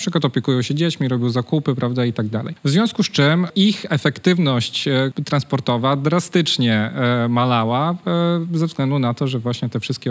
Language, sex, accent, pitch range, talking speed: Polish, male, native, 125-160 Hz, 160 wpm